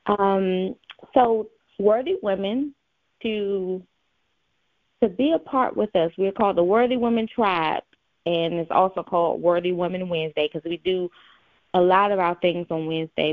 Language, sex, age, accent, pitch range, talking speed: English, female, 20-39, American, 165-195 Hz, 155 wpm